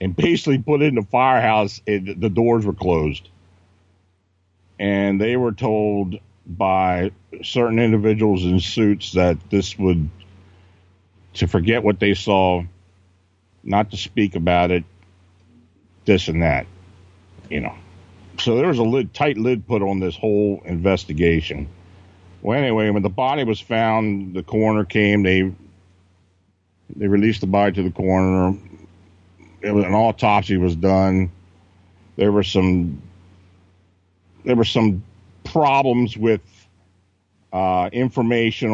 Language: English